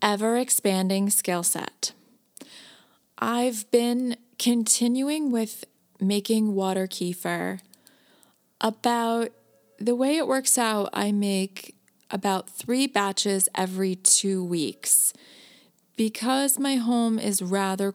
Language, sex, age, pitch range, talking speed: English, female, 20-39, 180-230 Hz, 95 wpm